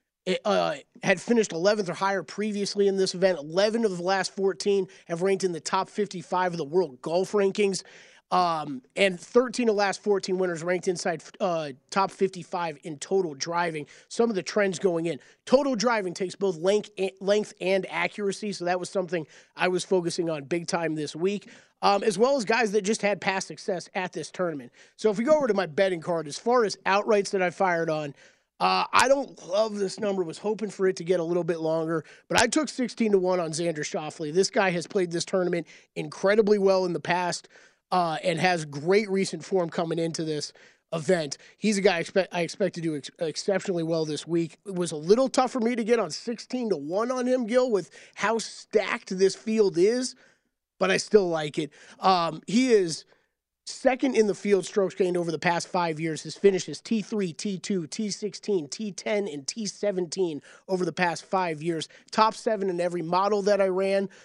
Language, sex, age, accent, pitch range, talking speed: English, male, 30-49, American, 170-210 Hz, 205 wpm